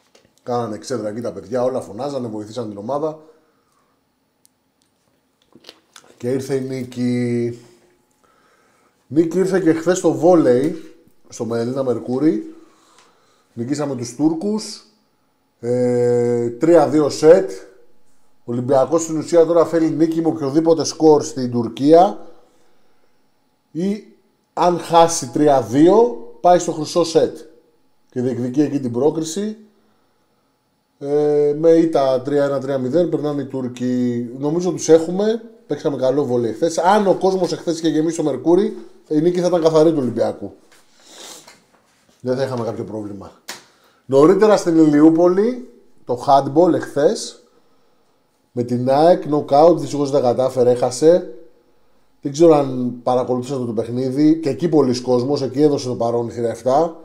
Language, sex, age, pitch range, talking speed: Greek, male, 30-49, 125-165 Hz, 125 wpm